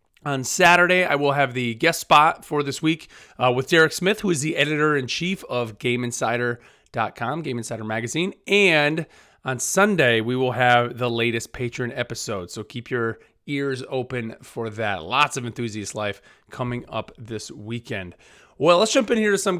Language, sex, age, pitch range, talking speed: English, male, 30-49, 120-160 Hz, 170 wpm